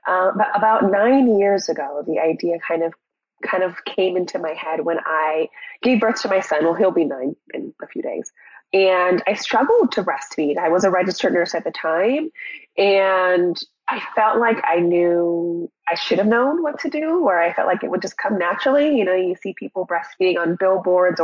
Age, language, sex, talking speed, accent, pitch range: 20-39, English, female, 210 wpm, American, 165-215 Hz